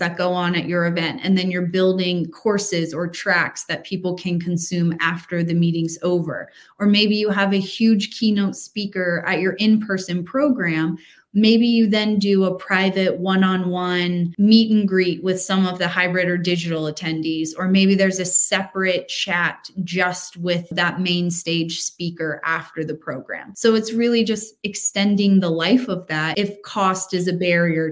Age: 20-39